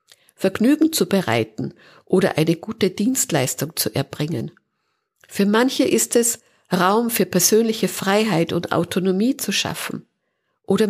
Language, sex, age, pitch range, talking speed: German, female, 50-69, 175-220 Hz, 120 wpm